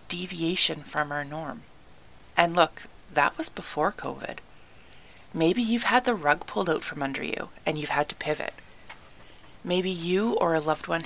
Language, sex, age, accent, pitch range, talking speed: English, female, 30-49, American, 155-220 Hz, 170 wpm